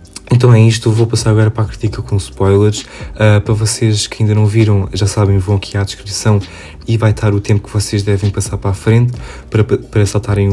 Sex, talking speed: male, 230 wpm